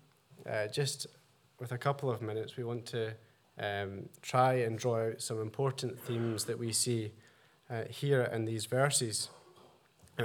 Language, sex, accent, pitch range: English, male, British, 120-145 Hz